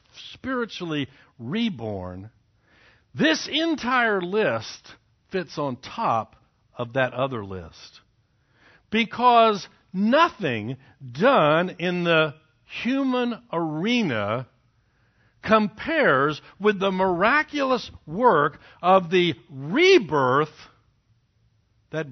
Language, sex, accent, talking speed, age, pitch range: English, male, American, 75 wpm, 60-79, 115-190 Hz